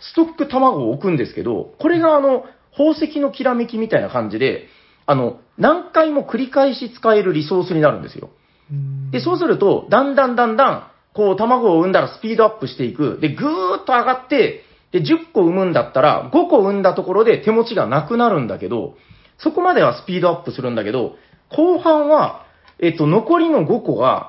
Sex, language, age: male, Japanese, 40-59